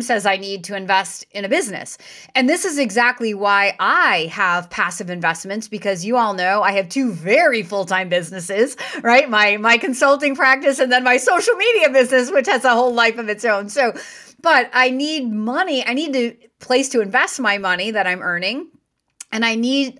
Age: 30-49